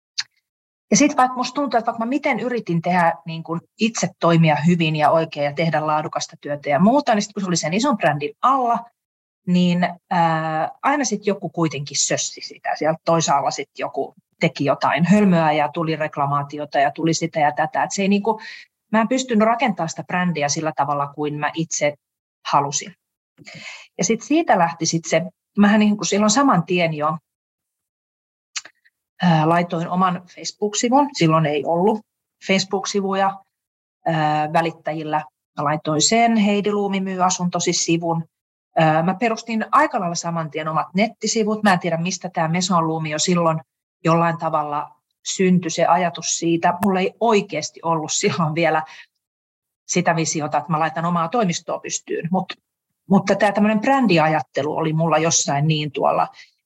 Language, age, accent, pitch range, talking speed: Finnish, 40-59, native, 155-200 Hz, 150 wpm